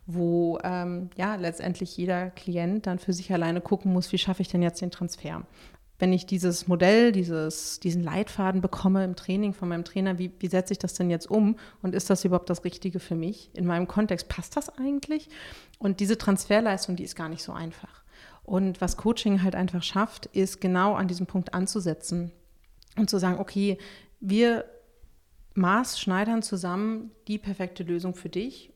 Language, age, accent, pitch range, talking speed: German, 30-49, German, 180-205 Hz, 180 wpm